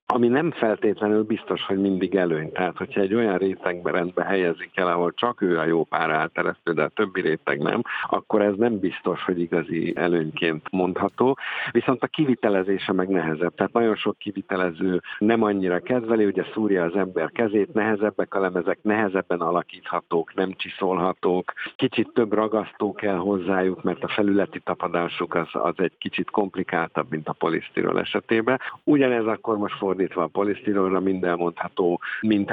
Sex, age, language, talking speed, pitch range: male, 50-69, Hungarian, 155 wpm, 90-110 Hz